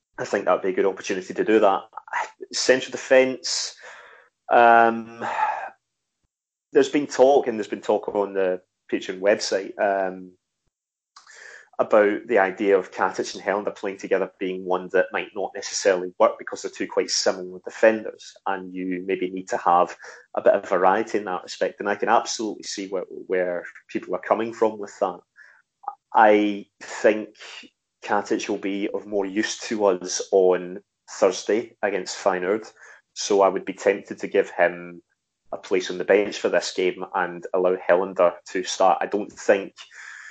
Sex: male